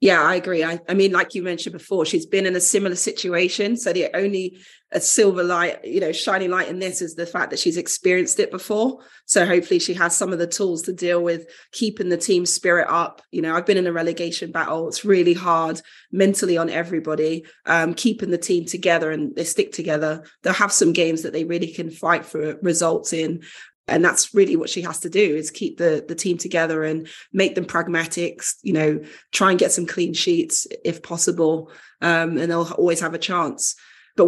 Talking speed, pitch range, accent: 215 wpm, 165-195 Hz, British